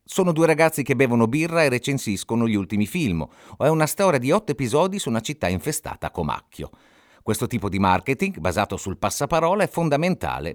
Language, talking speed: Italian, 180 wpm